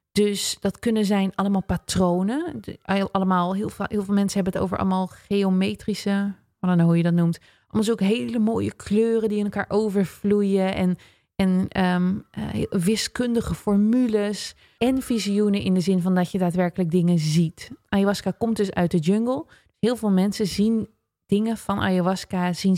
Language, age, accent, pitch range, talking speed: Dutch, 30-49, Dutch, 180-210 Hz, 165 wpm